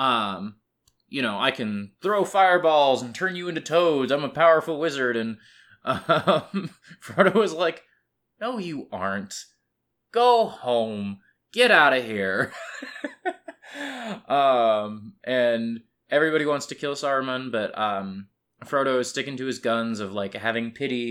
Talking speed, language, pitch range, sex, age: 140 wpm, English, 110-155 Hz, male, 20-39